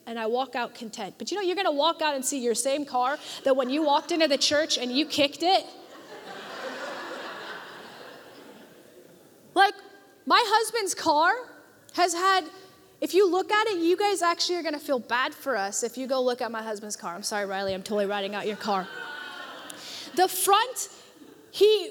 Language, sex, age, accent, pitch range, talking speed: English, female, 20-39, American, 265-360 Hz, 185 wpm